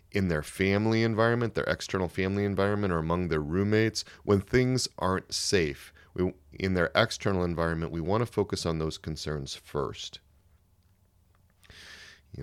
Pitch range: 80-105 Hz